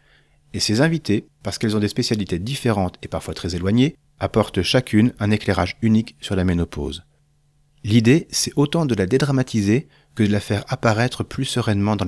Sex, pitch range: male, 95-140 Hz